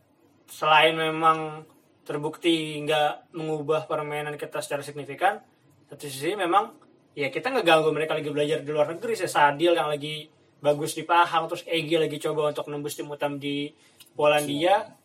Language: Indonesian